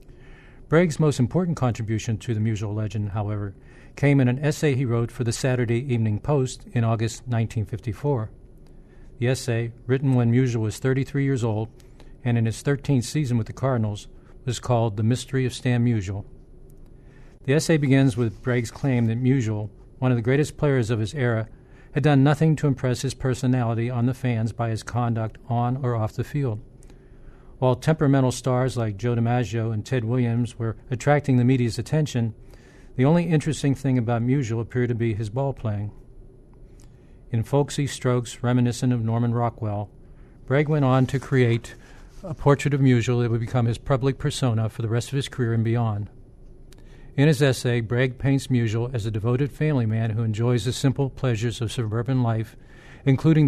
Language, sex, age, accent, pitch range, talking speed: English, male, 50-69, American, 115-135 Hz, 175 wpm